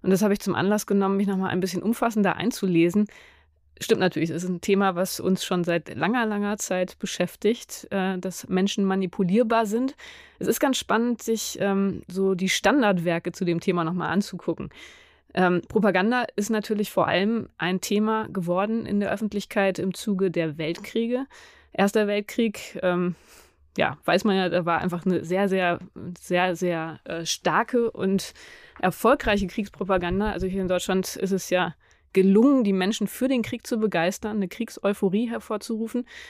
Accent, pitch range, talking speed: German, 185-220 Hz, 165 wpm